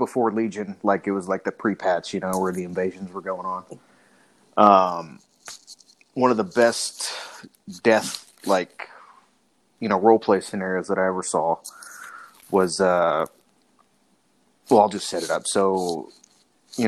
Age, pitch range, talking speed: 30-49, 95-110 Hz, 150 wpm